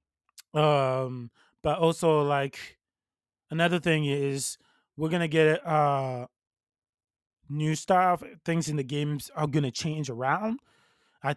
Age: 20-39